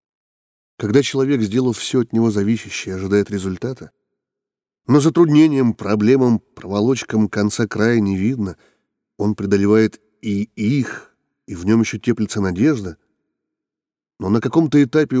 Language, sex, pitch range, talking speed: Russian, male, 105-135 Hz, 125 wpm